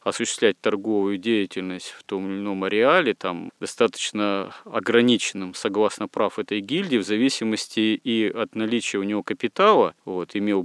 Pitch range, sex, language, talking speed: 100-115 Hz, male, Russian, 130 wpm